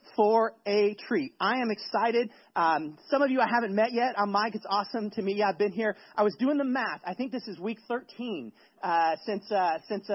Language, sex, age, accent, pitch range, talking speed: English, male, 30-49, American, 170-215 Hz, 225 wpm